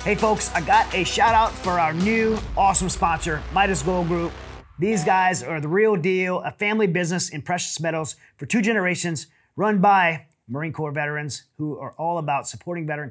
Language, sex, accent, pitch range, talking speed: English, male, American, 150-210 Hz, 190 wpm